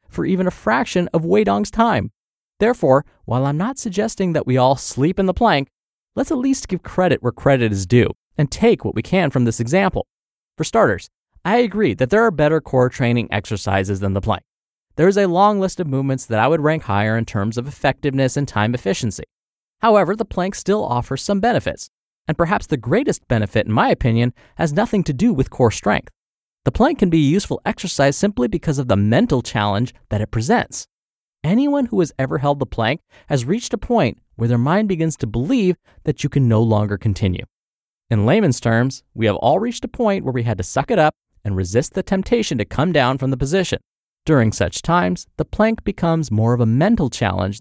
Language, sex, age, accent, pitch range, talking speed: English, male, 30-49, American, 115-190 Hz, 210 wpm